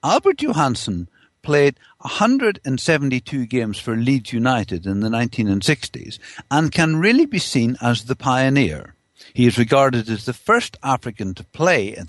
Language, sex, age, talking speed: English, male, 60-79, 145 wpm